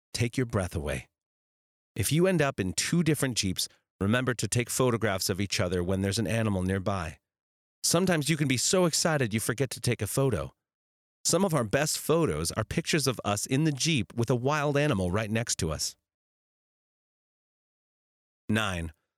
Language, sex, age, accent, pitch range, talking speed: English, male, 40-59, American, 90-130 Hz, 180 wpm